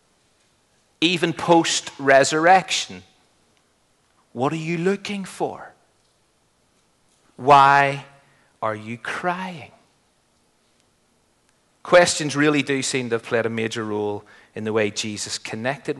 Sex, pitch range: male, 125-165 Hz